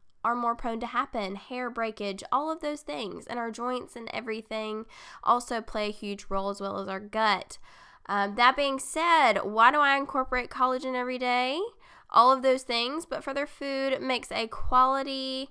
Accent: American